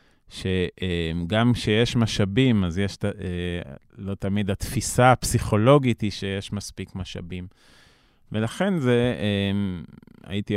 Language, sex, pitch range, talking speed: Hebrew, male, 95-120 Hz, 90 wpm